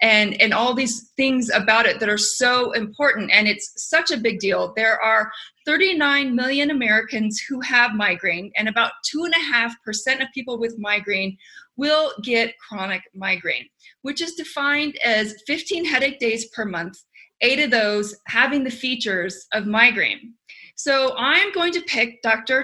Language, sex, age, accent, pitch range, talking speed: English, female, 30-49, American, 220-285 Hz, 155 wpm